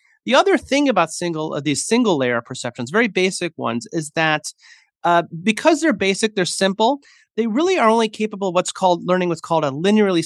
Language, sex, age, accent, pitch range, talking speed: English, male, 30-49, American, 150-195 Hz, 200 wpm